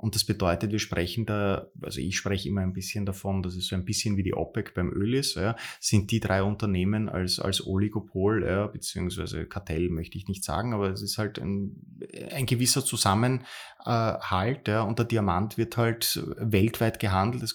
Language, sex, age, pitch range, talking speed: German, male, 20-39, 95-110 Hz, 180 wpm